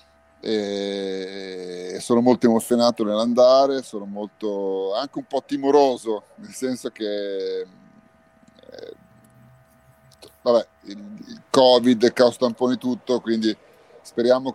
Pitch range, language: 100-125 Hz, Italian